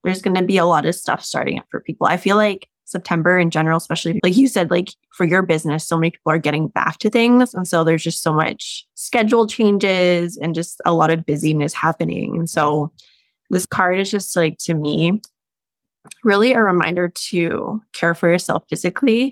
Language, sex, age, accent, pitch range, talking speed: English, female, 20-39, American, 165-200 Hz, 205 wpm